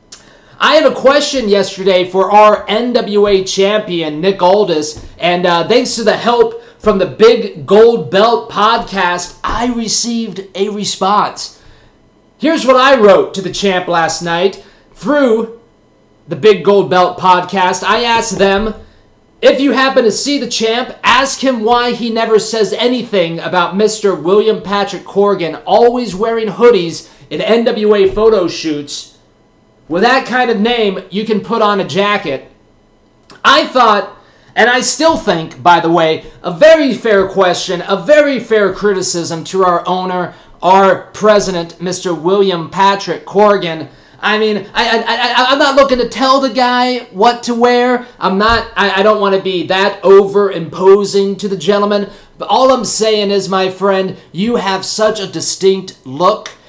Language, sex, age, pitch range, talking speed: English, male, 30-49, 180-230 Hz, 160 wpm